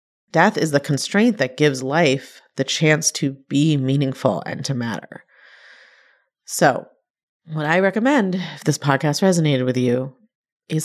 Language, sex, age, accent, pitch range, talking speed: English, female, 30-49, American, 135-175 Hz, 145 wpm